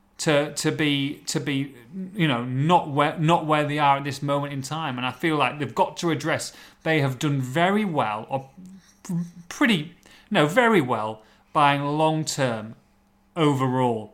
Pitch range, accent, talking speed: 135-170 Hz, British, 165 wpm